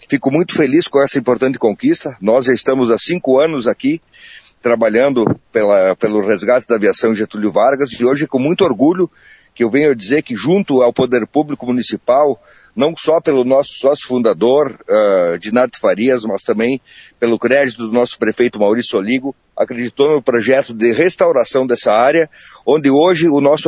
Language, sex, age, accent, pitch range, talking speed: Portuguese, male, 40-59, Brazilian, 120-160 Hz, 160 wpm